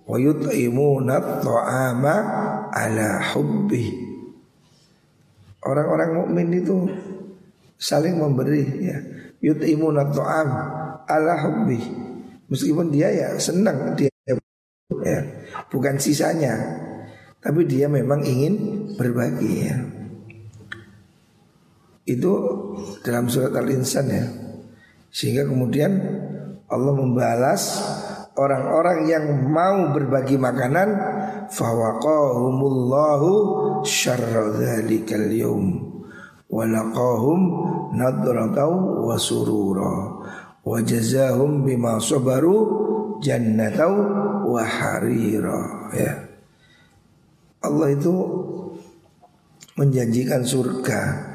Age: 50-69